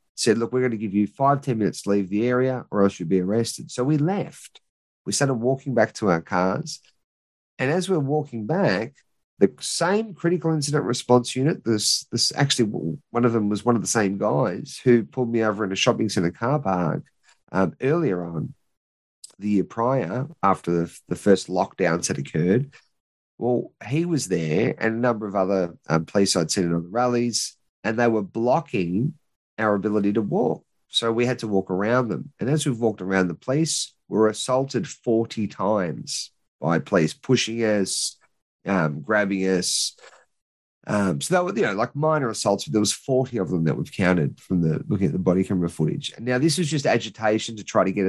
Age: 30-49